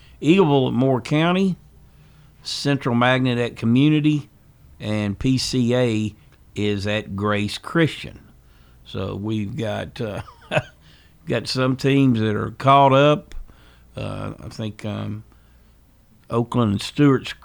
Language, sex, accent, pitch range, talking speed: English, male, American, 105-130 Hz, 110 wpm